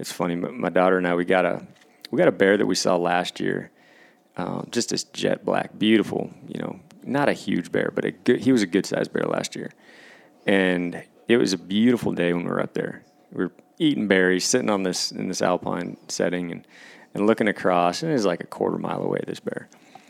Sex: male